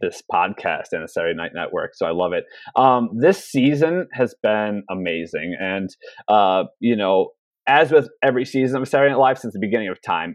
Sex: male